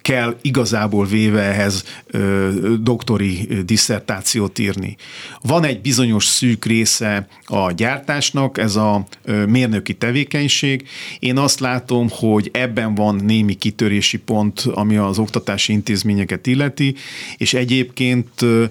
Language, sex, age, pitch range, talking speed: Hungarian, male, 50-69, 105-125 Hz, 110 wpm